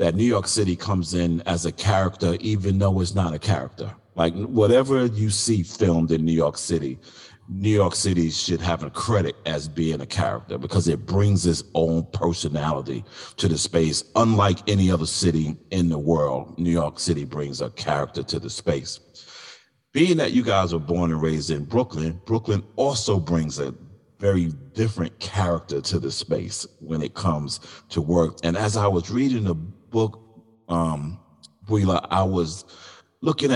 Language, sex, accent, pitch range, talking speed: English, male, American, 80-100 Hz, 170 wpm